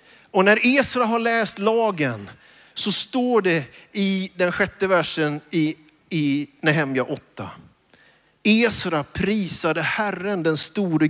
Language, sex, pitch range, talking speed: Swedish, male, 155-210 Hz, 120 wpm